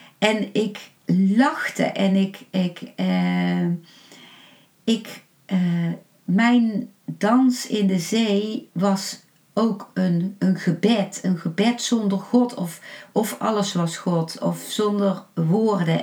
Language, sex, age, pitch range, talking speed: Dutch, female, 50-69, 170-210 Hz, 115 wpm